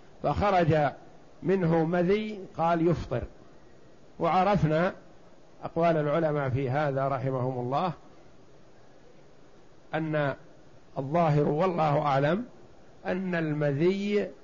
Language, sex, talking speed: Arabic, male, 75 wpm